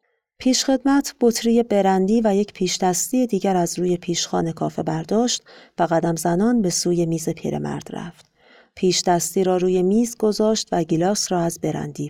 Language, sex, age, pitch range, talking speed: Persian, female, 40-59, 170-215 Hz, 160 wpm